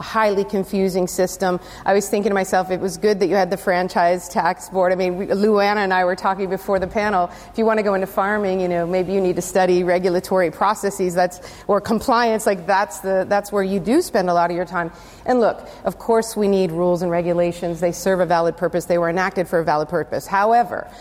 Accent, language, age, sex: American, English, 40-59, female